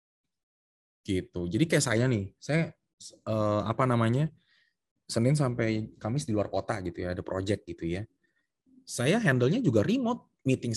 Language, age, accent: Indonesian, 20-39, native